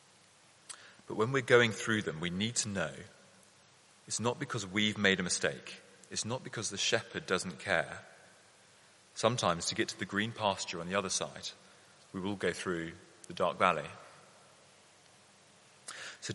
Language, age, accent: English, 30-49, British